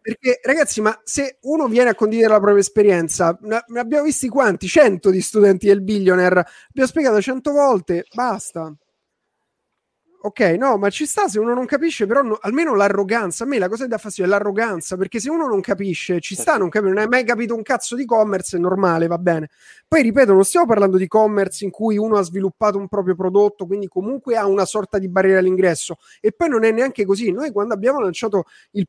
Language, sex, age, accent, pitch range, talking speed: Italian, male, 30-49, native, 185-225 Hz, 210 wpm